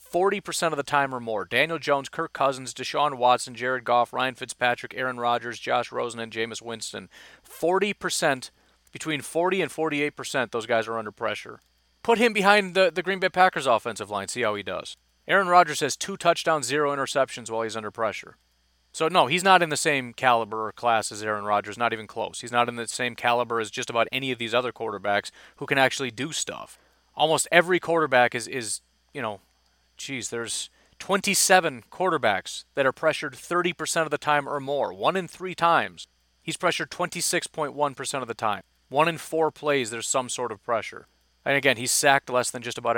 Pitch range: 115-160 Hz